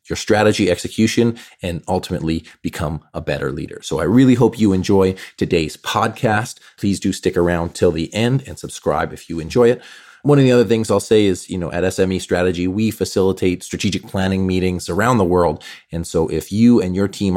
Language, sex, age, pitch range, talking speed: English, male, 30-49, 85-105 Hz, 200 wpm